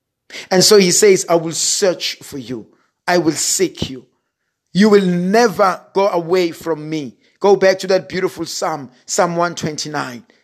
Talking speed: 160 wpm